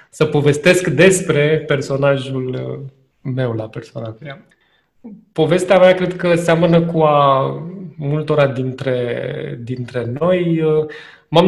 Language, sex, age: Romanian, male, 20-39